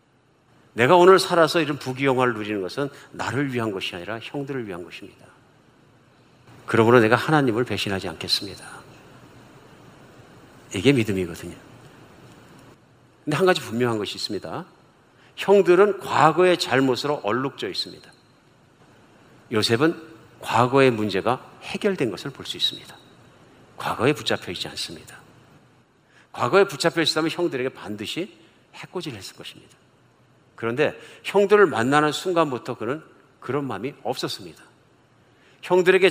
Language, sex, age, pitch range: Korean, male, 50-69, 115-160 Hz